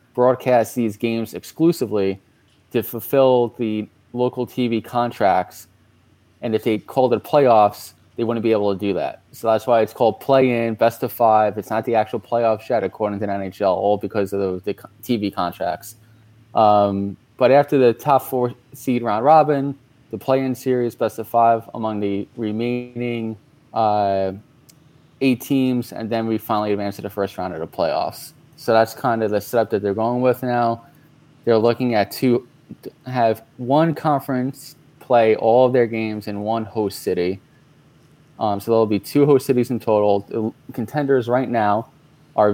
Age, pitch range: 20-39, 110-130 Hz